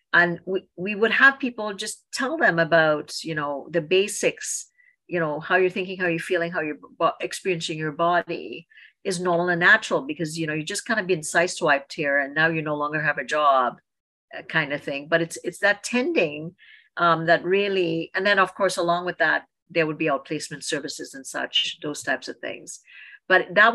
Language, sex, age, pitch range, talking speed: English, female, 50-69, 160-195 Hz, 205 wpm